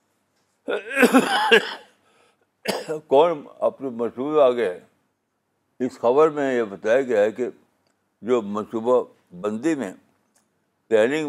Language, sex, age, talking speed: Urdu, male, 60-79, 90 wpm